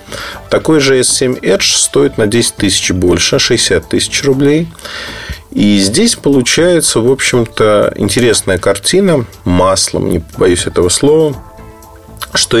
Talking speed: 120 wpm